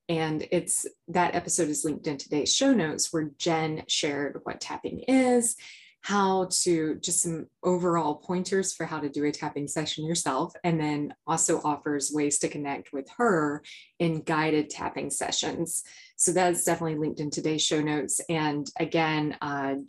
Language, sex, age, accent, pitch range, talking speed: English, female, 20-39, American, 150-180 Hz, 165 wpm